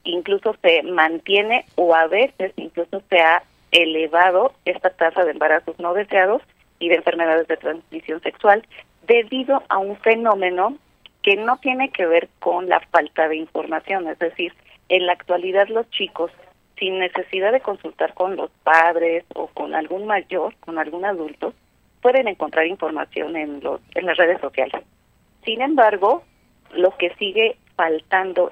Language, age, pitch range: Spanish, 40-59, 165-205 Hz